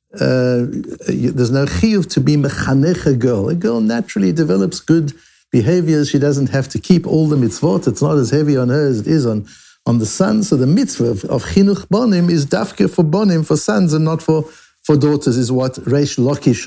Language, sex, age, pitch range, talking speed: English, male, 60-79, 130-175 Hz, 205 wpm